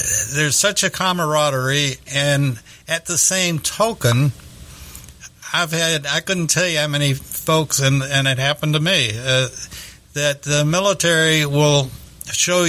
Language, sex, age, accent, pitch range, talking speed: English, male, 60-79, American, 130-165 Hz, 140 wpm